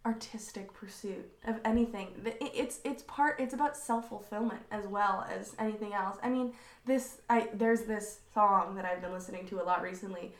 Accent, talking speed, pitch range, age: American, 175 wpm, 200-245 Hz, 20-39